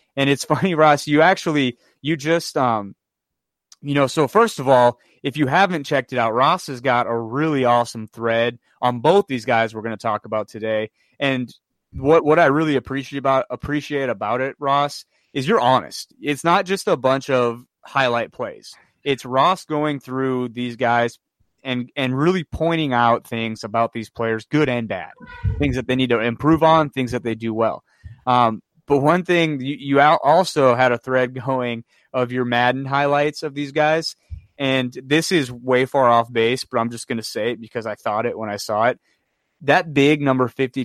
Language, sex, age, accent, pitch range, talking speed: English, male, 30-49, American, 120-150 Hz, 195 wpm